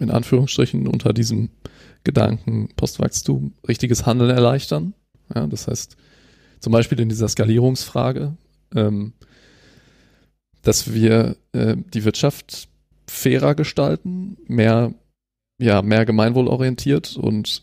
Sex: male